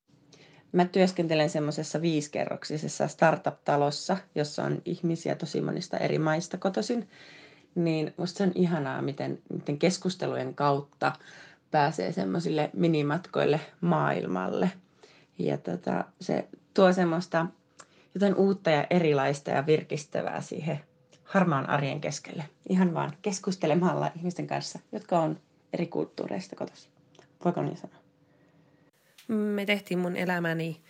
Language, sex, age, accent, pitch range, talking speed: Finnish, female, 30-49, native, 160-205 Hz, 115 wpm